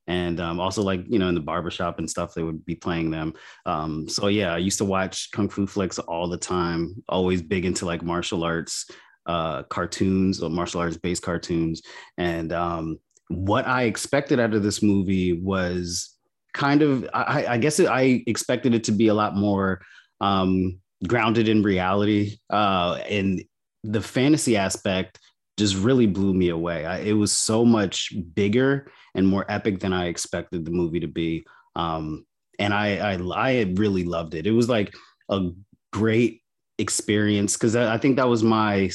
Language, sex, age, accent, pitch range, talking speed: English, male, 30-49, American, 85-110 Hz, 180 wpm